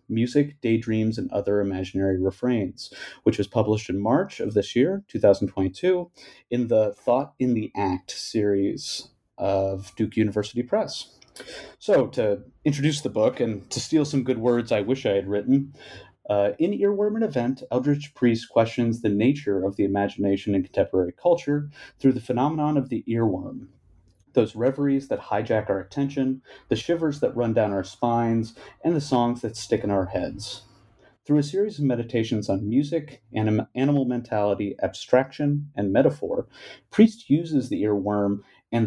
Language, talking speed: English, 160 wpm